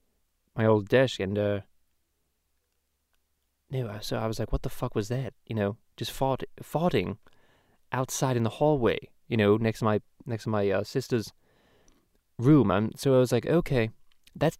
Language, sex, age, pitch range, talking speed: English, male, 20-39, 105-140 Hz, 175 wpm